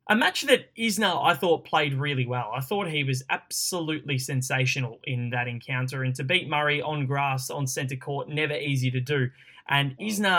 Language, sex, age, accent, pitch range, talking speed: English, male, 10-29, Australian, 130-160 Hz, 190 wpm